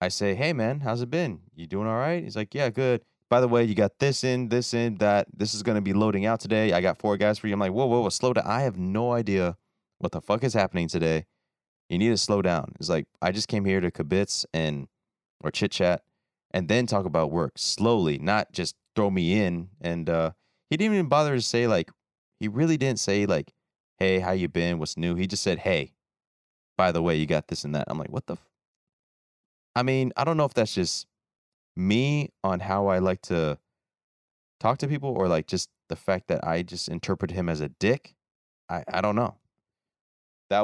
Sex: male